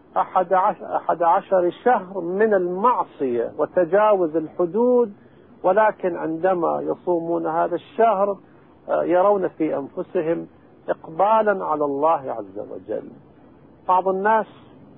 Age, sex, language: 50-69, male, Arabic